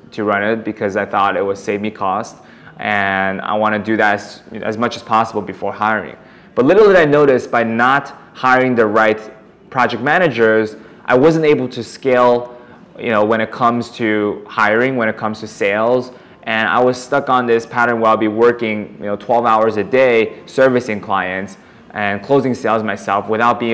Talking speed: 205 wpm